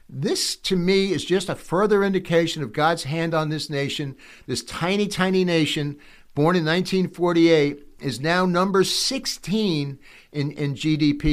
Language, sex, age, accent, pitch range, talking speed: English, male, 60-79, American, 120-165 Hz, 150 wpm